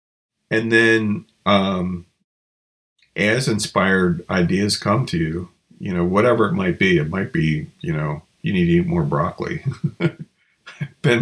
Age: 40-59